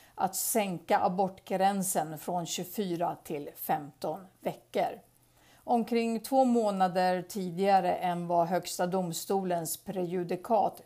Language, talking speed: English, 95 wpm